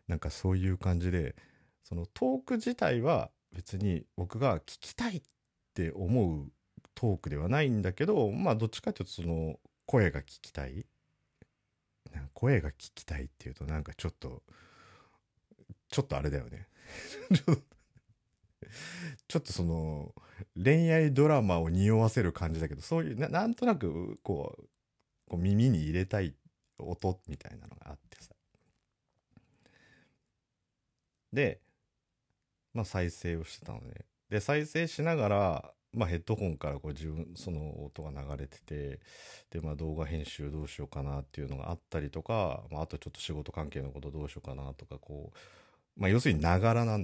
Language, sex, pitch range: Japanese, male, 75-115 Hz